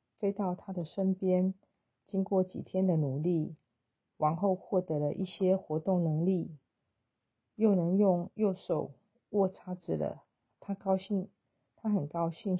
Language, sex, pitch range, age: Chinese, female, 160-195 Hz, 40-59